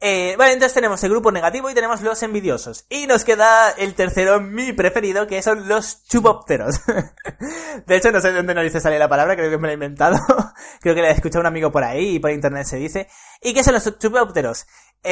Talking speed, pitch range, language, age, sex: 235 wpm, 155-210 Hz, Spanish, 20-39, male